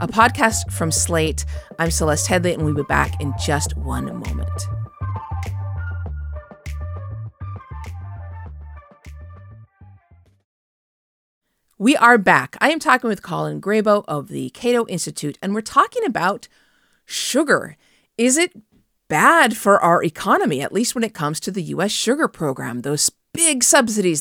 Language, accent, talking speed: English, American, 130 wpm